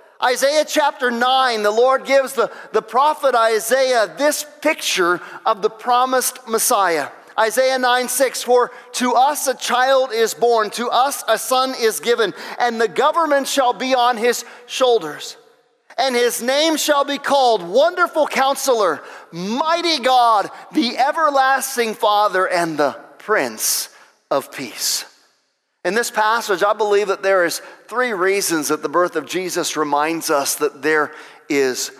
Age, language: 40-59, English